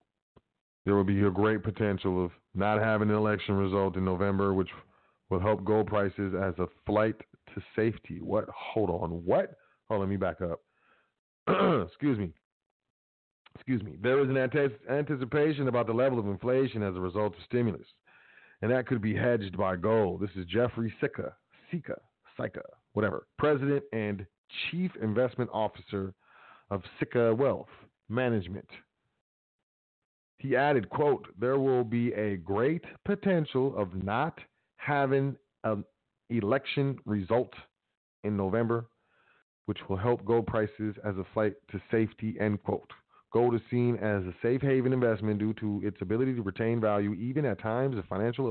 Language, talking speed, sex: English, 155 wpm, male